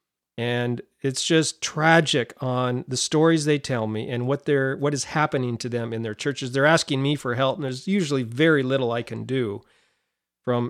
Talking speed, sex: 195 wpm, male